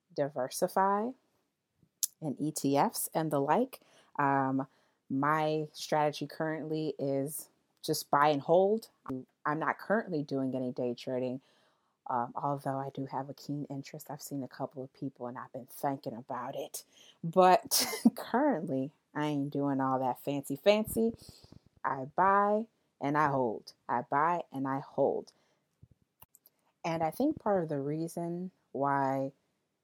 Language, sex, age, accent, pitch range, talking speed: English, female, 30-49, American, 140-175 Hz, 140 wpm